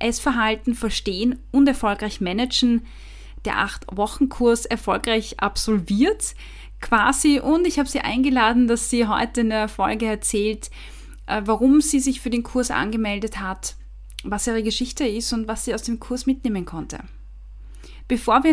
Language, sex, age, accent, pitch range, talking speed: German, female, 20-39, German, 215-250 Hz, 145 wpm